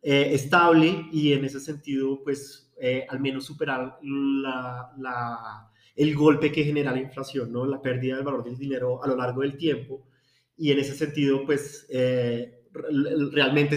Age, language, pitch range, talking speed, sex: 20-39, Spanish, 130-150 Hz, 165 wpm, male